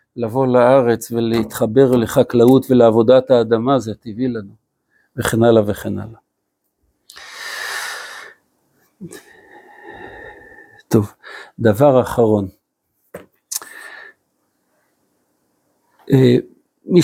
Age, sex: 60-79, male